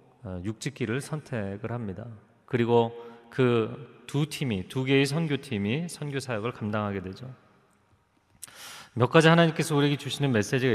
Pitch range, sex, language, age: 105-140 Hz, male, Korean, 30-49